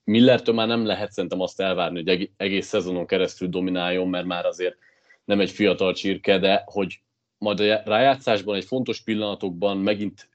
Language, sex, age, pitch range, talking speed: Hungarian, male, 30-49, 95-115 Hz, 160 wpm